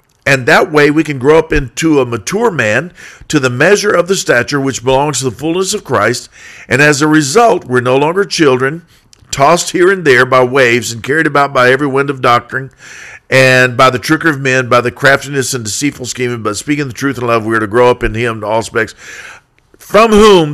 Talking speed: 220 wpm